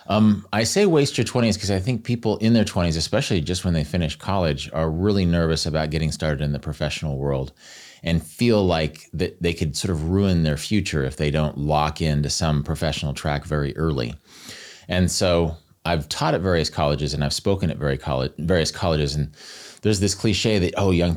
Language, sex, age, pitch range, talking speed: English, male, 30-49, 75-100 Hz, 205 wpm